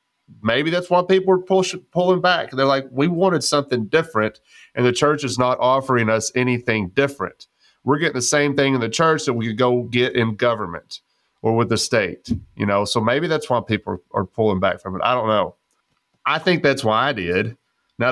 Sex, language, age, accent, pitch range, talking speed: male, English, 30-49, American, 115-145 Hz, 220 wpm